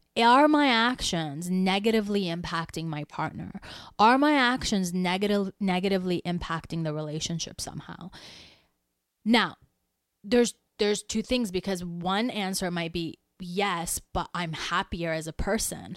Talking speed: 120 wpm